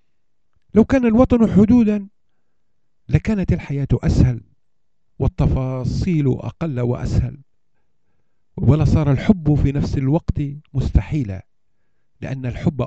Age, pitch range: 50-69, 110-150 Hz